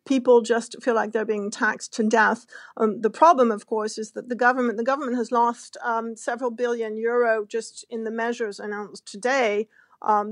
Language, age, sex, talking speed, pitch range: English, 40-59, female, 190 wpm, 220-250 Hz